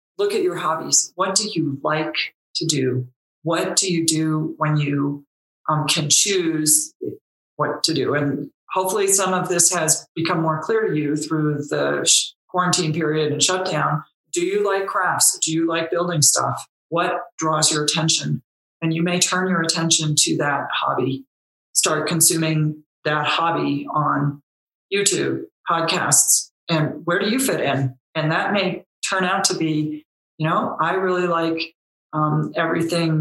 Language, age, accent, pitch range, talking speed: English, 40-59, American, 150-185 Hz, 160 wpm